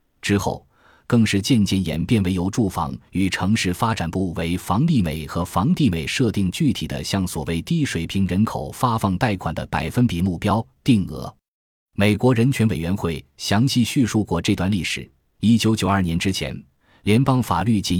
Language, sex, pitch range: Chinese, male, 85-115 Hz